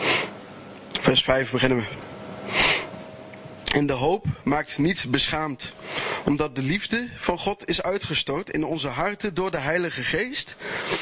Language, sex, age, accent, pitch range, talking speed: Dutch, male, 20-39, Dutch, 150-185 Hz, 130 wpm